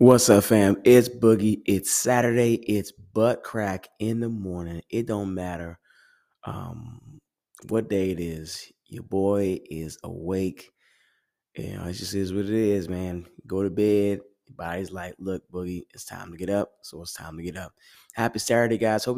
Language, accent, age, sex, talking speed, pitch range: English, American, 20-39, male, 185 wpm, 90-110 Hz